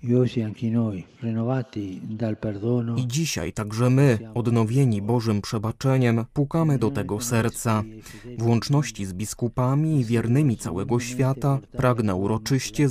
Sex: male